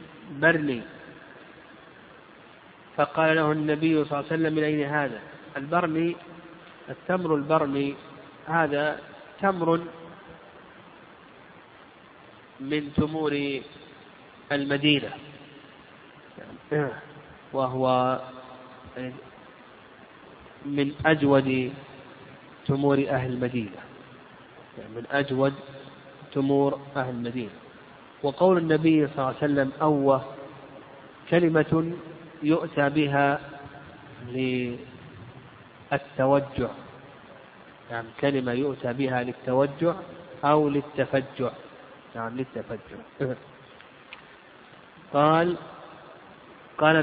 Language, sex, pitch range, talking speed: Arabic, male, 135-160 Hz, 70 wpm